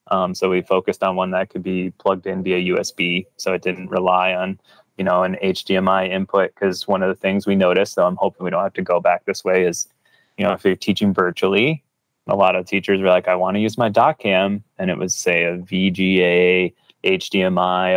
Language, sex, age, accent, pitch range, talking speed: English, male, 20-39, American, 95-100 Hz, 225 wpm